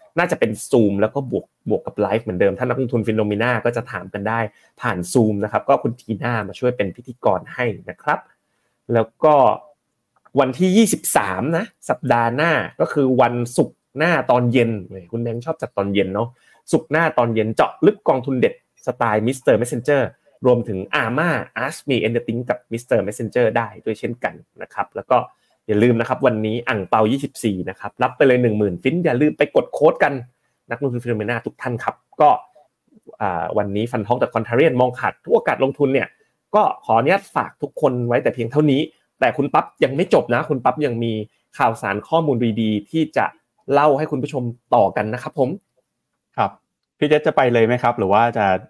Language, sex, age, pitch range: Thai, male, 30-49, 110-130 Hz